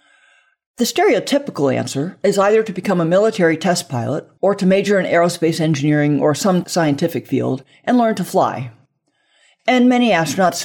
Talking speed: 160 wpm